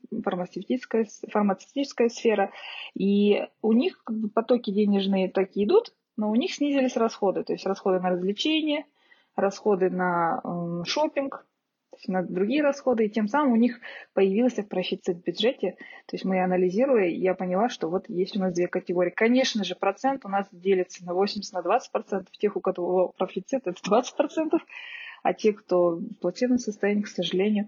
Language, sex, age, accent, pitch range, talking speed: Russian, female, 20-39, native, 185-235 Hz, 160 wpm